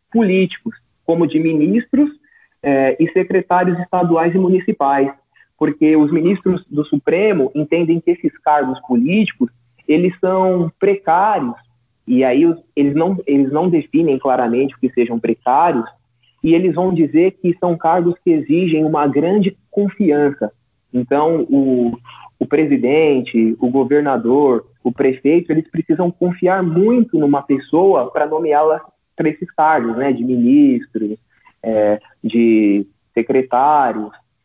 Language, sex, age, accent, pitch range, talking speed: Portuguese, male, 30-49, Brazilian, 135-185 Hz, 125 wpm